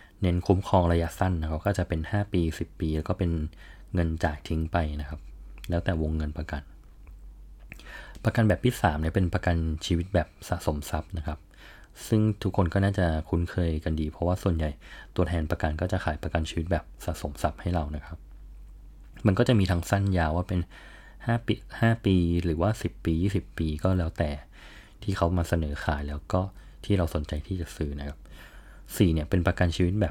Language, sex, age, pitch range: Thai, male, 20-39, 80-95 Hz